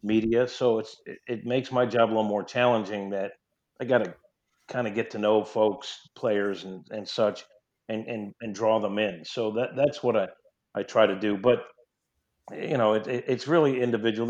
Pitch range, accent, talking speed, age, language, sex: 105-125 Hz, American, 205 wpm, 50-69, English, male